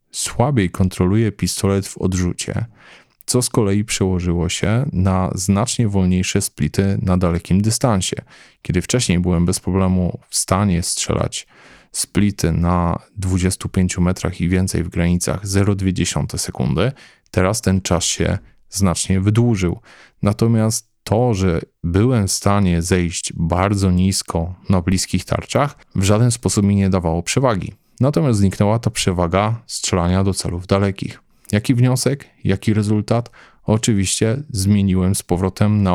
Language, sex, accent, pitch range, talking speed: Polish, male, native, 90-105 Hz, 130 wpm